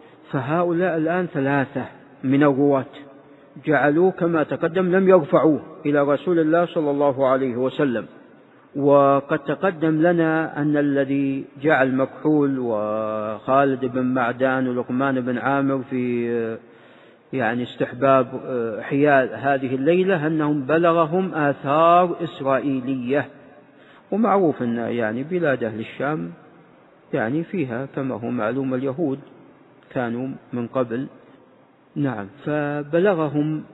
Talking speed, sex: 100 wpm, male